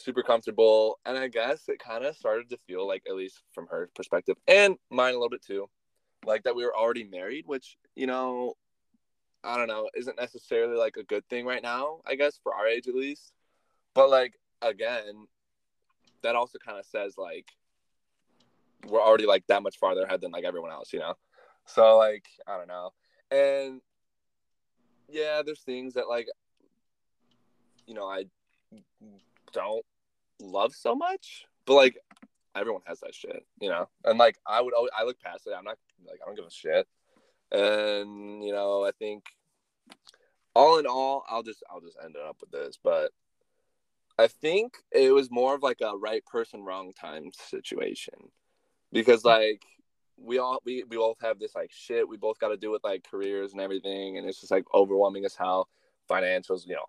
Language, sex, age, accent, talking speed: English, male, 20-39, American, 185 wpm